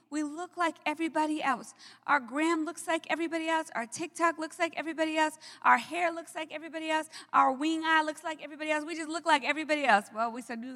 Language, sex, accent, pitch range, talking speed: English, female, American, 240-315 Hz, 220 wpm